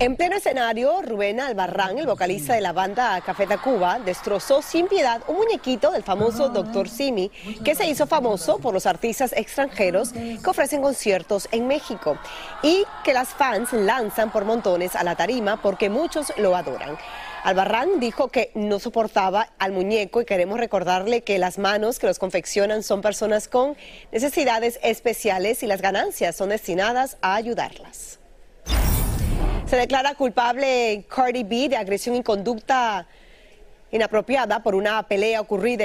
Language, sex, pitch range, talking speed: Spanish, female, 195-245 Hz, 150 wpm